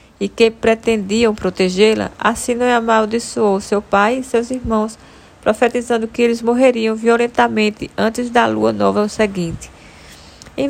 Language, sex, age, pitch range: Portuguese, female, 20-39, 200-235 Hz